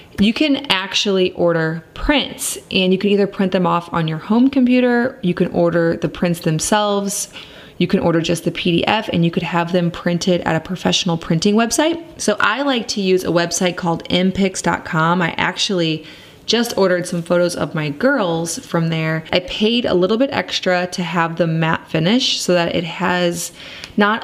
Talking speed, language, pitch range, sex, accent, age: 185 wpm, English, 170-210 Hz, female, American, 20-39